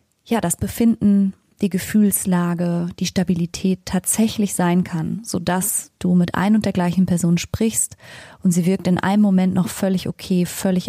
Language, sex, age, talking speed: German, female, 20-39, 165 wpm